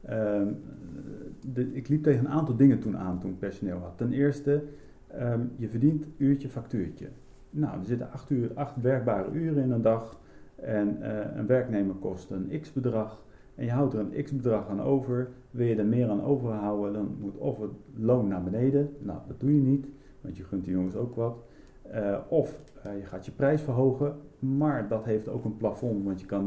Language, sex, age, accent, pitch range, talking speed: Dutch, male, 50-69, Dutch, 105-135 Hz, 205 wpm